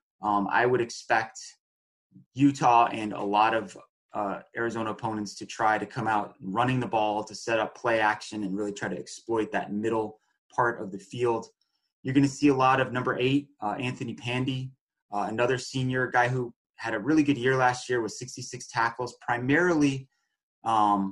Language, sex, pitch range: English, male, 105-125 Hz